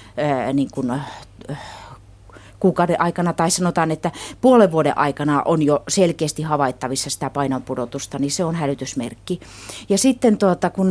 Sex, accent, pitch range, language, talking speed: female, native, 130-170 Hz, Finnish, 140 wpm